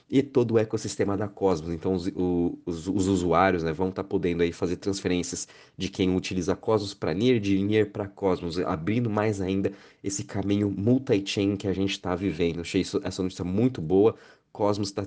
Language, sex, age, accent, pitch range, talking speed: Portuguese, male, 20-39, Brazilian, 95-105 Hz, 185 wpm